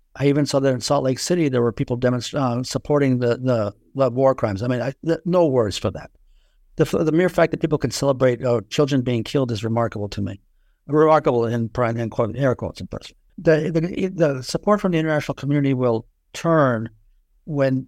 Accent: American